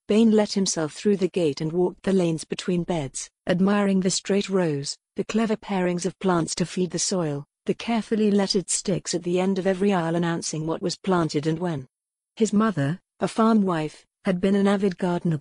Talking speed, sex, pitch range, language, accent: 200 wpm, female, 165-195 Hz, English, British